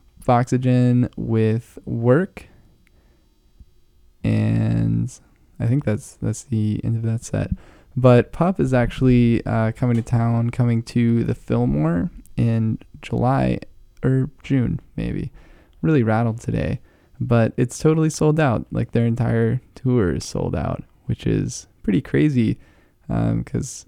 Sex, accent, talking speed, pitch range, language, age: male, American, 130 wpm, 105-125 Hz, English, 20-39